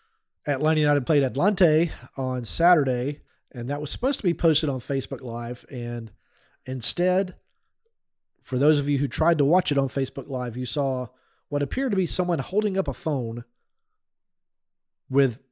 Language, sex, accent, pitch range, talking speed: English, male, American, 125-155 Hz, 160 wpm